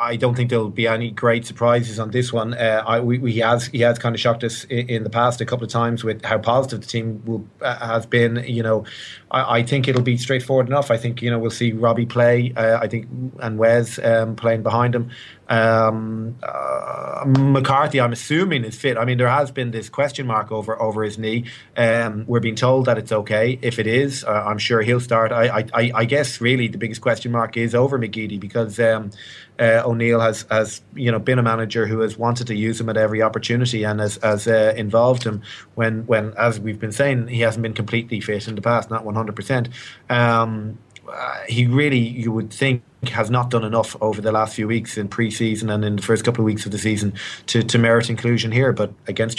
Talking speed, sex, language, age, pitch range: 230 wpm, male, English, 30-49, 110-120 Hz